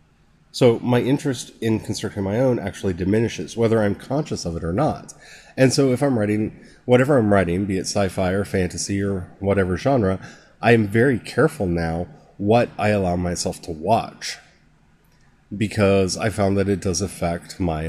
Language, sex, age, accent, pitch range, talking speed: English, male, 30-49, American, 90-110 Hz, 170 wpm